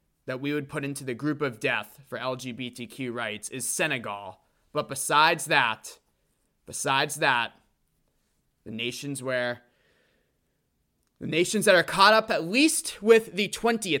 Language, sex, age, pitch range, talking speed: English, male, 20-39, 120-160 Hz, 135 wpm